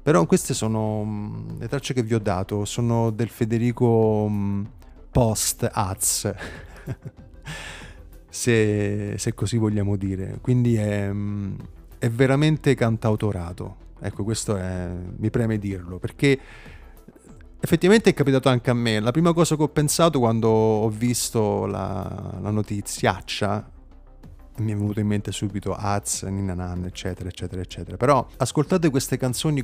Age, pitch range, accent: 30-49, 90-120 Hz, native